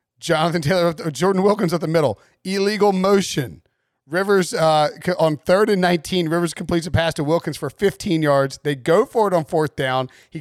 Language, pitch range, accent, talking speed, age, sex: English, 150-200 Hz, American, 185 wpm, 40-59, male